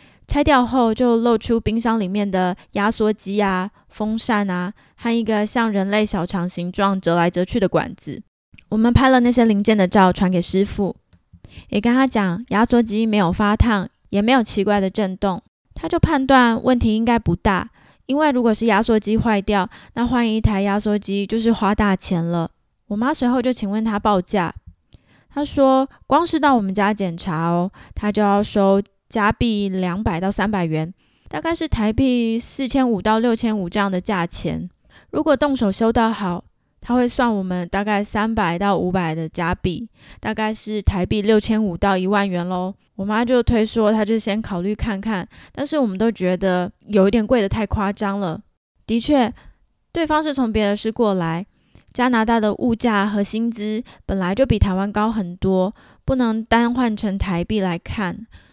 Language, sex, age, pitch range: Chinese, female, 10-29, 190-230 Hz